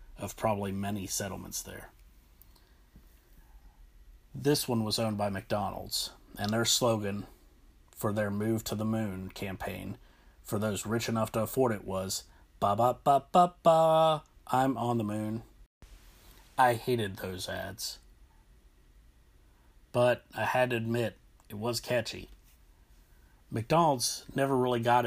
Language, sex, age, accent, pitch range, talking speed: English, male, 30-49, American, 95-120 Hz, 120 wpm